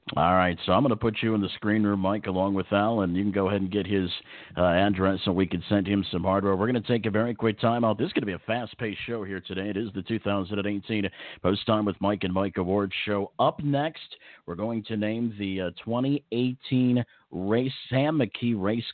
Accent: American